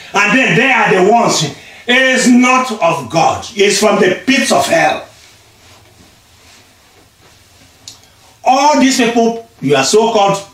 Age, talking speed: 40-59, 130 wpm